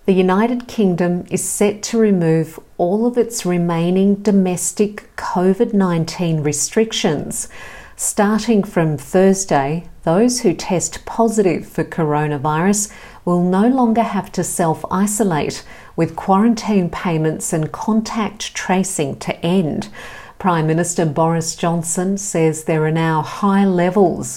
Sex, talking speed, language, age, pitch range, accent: female, 115 wpm, English, 50-69, 165-205 Hz, Australian